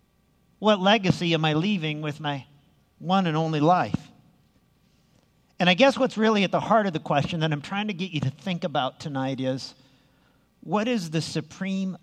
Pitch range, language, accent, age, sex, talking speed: 150-195 Hz, English, American, 50-69, male, 185 wpm